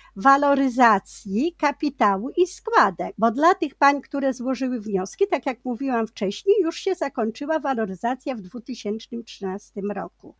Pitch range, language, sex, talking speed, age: 255-335 Hz, Polish, female, 125 wpm, 50-69